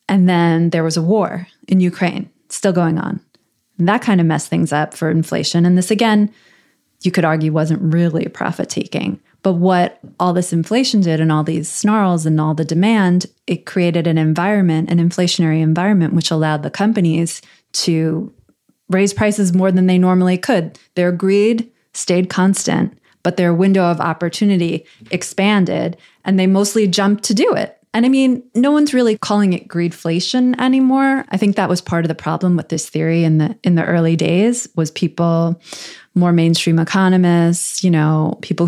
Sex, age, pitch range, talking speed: female, 20-39, 165-195 Hz, 175 wpm